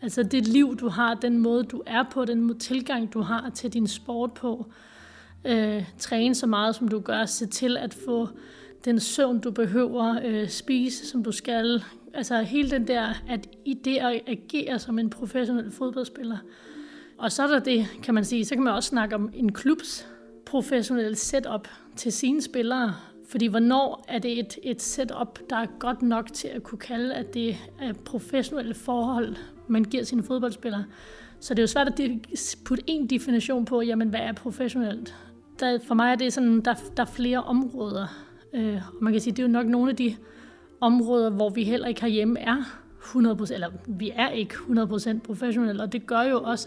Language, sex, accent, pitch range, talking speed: Danish, female, native, 225-255 Hz, 200 wpm